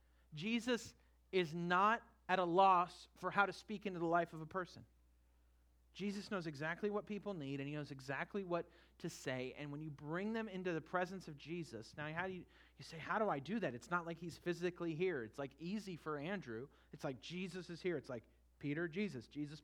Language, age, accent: English, 40-59, American